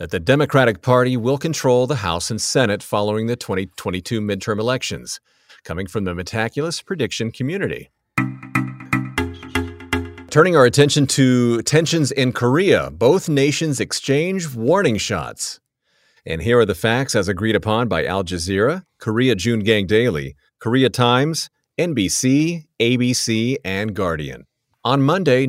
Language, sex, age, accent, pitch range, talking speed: English, male, 40-59, American, 105-135 Hz, 130 wpm